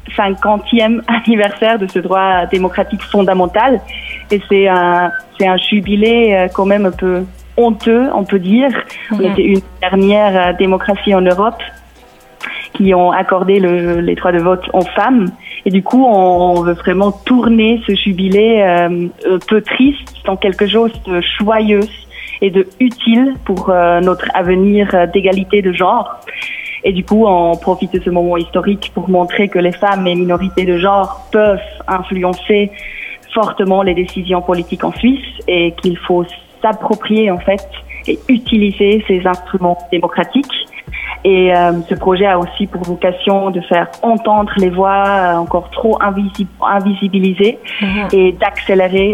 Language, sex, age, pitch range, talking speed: French, female, 30-49, 180-205 Hz, 145 wpm